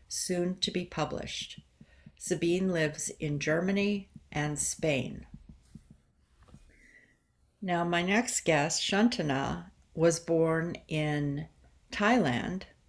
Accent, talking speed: American, 90 wpm